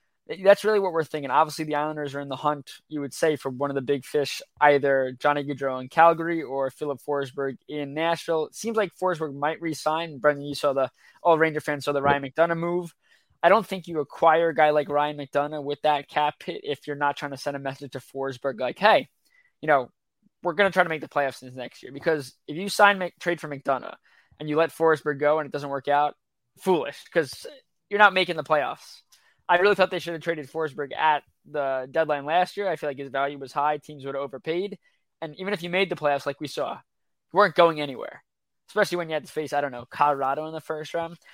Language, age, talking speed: English, 20-39, 240 wpm